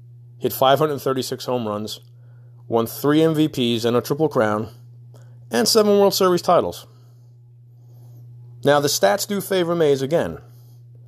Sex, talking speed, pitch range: male, 125 wpm, 120-135 Hz